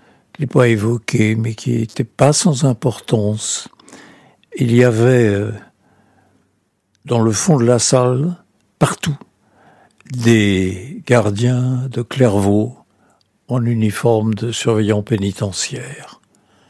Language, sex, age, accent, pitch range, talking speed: French, male, 60-79, French, 110-130 Hz, 105 wpm